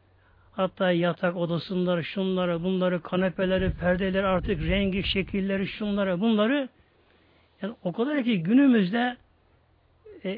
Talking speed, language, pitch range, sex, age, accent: 105 wpm, Turkish, 165-215 Hz, male, 60-79, native